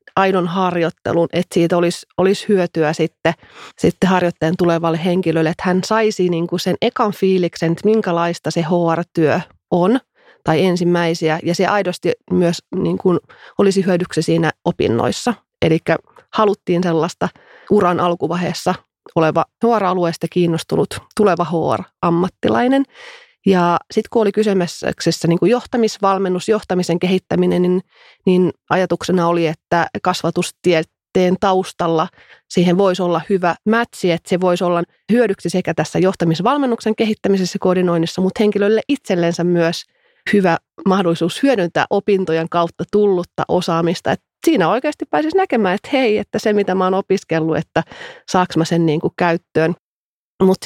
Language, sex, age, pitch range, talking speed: Finnish, female, 30-49, 170-200 Hz, 130 wpm